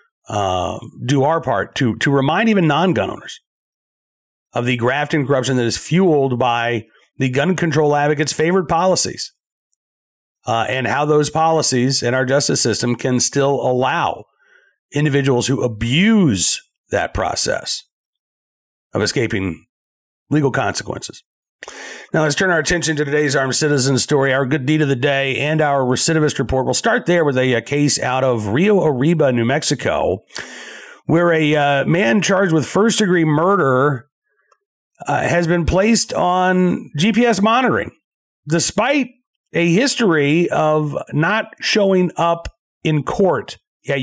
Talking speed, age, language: 140 wpm, 40-59, English